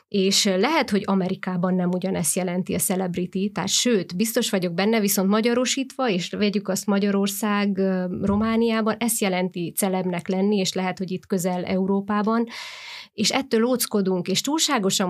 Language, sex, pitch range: Hungarian, female, 185-215 Hz